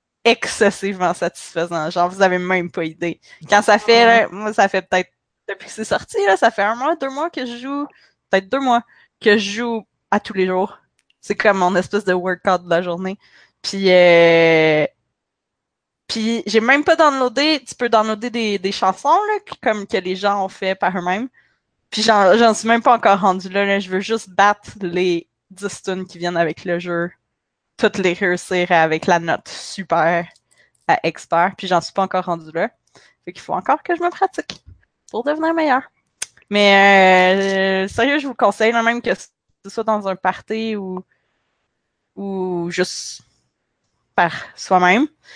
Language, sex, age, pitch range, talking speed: French, female, 20-39, 185-230 Hz, 185 wpm